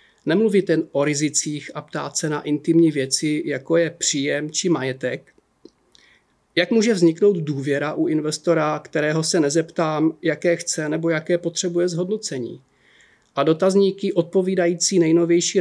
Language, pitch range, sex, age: Czech, 150-170 Hz, male, 40-59